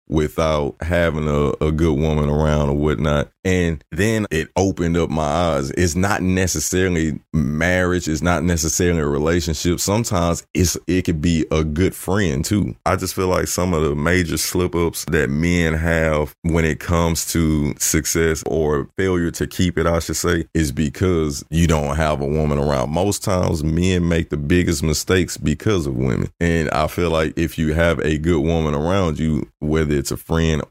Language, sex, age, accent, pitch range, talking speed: English, male, 30-49, American, 75-90 Hz, 180 wpm